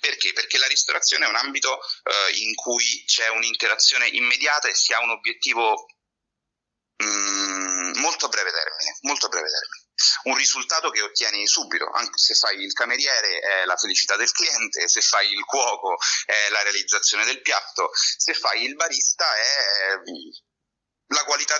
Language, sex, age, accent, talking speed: Italian, male, 30-49, native, 155 wpm